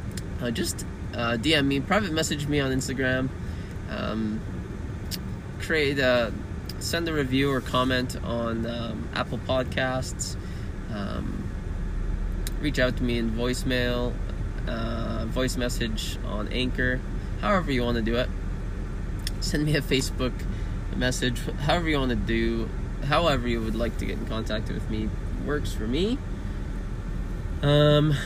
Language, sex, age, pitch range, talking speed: English, male, 20-39, 100-130 Hz, 135 wpm